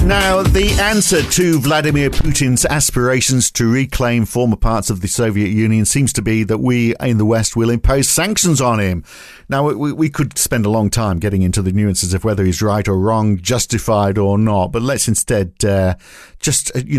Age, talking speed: 50-69, 195 wpm